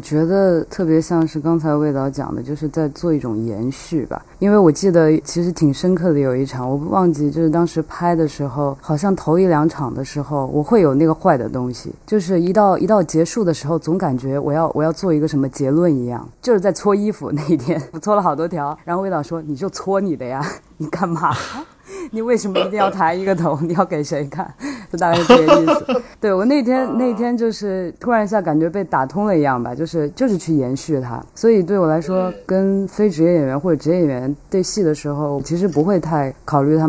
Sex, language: female, Chinese